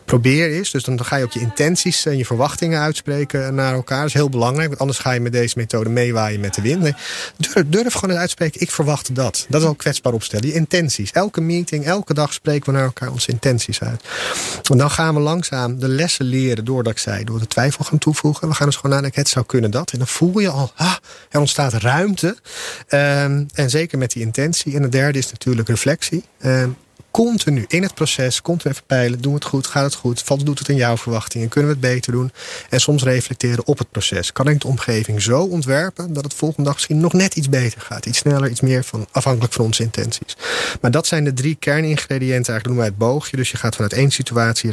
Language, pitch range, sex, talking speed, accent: Dutch, 120-150 Hz, male, 240 wpm, Dutch